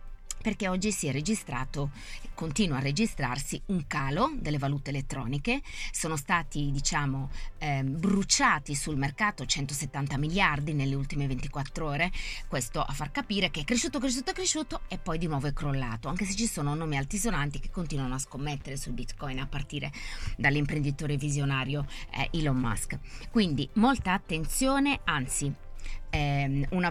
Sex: female